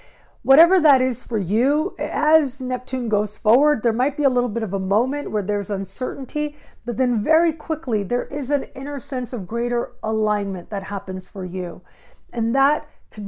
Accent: American